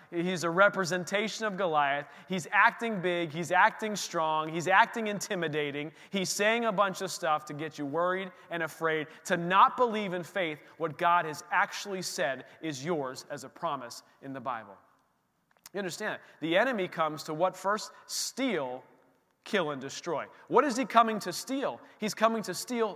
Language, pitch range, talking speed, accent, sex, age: English, 160-230 Hz, 175 wpm, American, male, 30-49